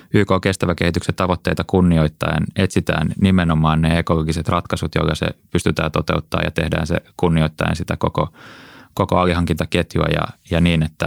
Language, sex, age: Finnish, male, 20-39